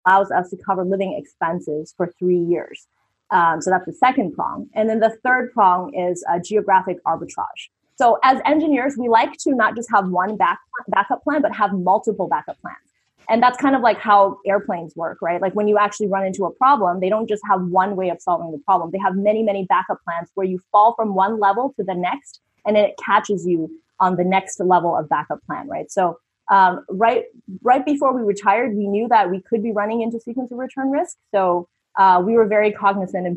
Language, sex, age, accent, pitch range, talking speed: English, female, 20-39, American, 180-225 Hz, 220 wpm